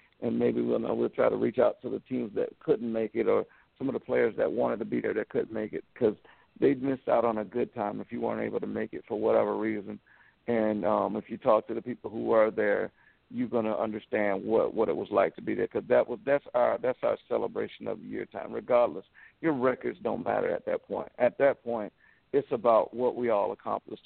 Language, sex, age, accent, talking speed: English, male, 50-69, American, 250 wpm